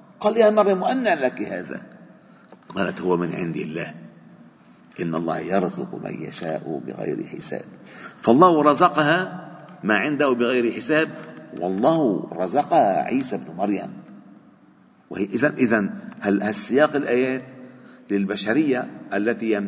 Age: 50-69